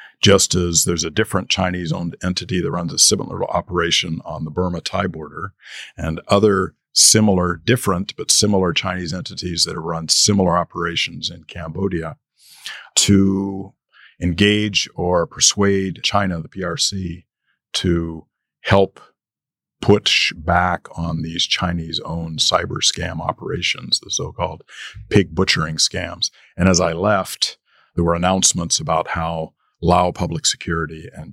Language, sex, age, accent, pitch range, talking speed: English, male, 50-69, American, 85-95 Hz, 125 wpm